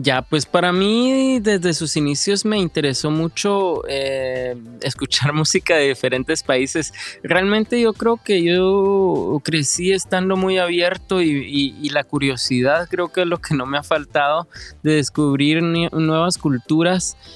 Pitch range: 140-180 Hz